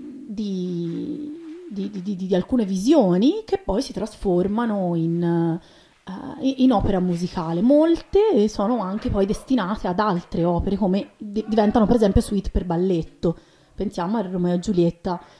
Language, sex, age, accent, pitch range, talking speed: Italian, female, 30-49, native, 175-220 Hz, 135 wpm